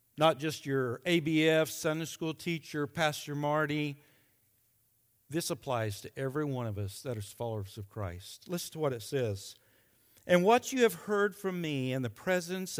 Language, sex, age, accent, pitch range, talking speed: English, male, 60-79, American, 125-180 Hz, 170 wpm